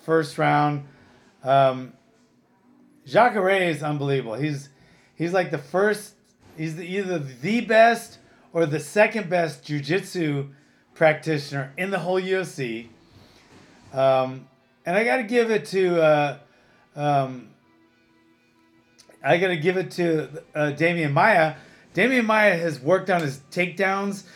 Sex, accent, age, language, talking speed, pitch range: male, American, 30-49, English, 130 wpm, 145-180 Hz